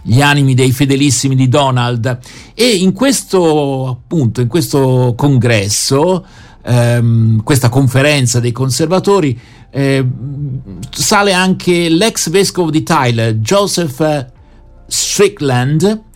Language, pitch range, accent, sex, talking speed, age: Italian, 125-185 Hz, native, male, 100 wpm, 60-79